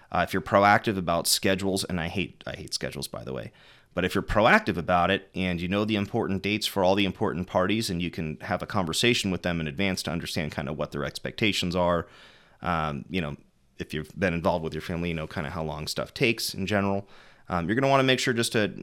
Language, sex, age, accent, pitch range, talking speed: English, male, 30-49, American, 85-105 Hz, 255 wpm